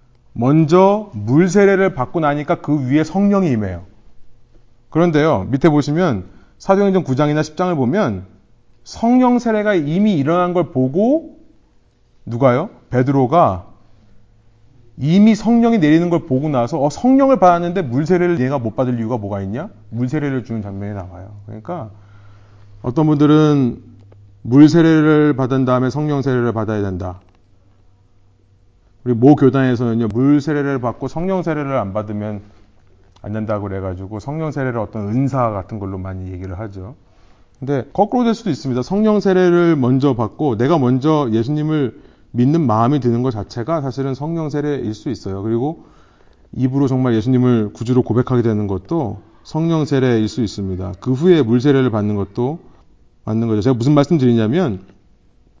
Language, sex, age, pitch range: Korean, male, 30-49, 105-155 Hz